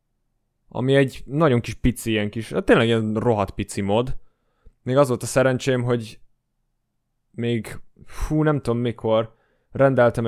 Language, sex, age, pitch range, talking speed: Hungarian, male, 20-39, 105-125 Hz, 145 wpm